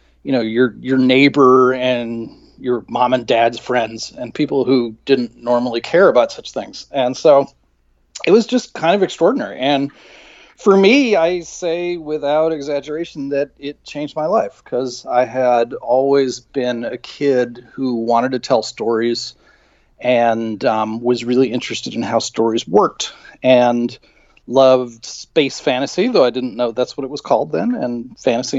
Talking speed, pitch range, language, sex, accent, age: 160 wpm, 120-140 Hz, English, male, American, 40-59